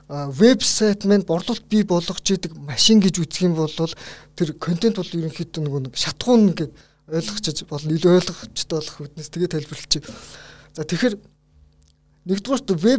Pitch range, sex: 150-195 Hz, male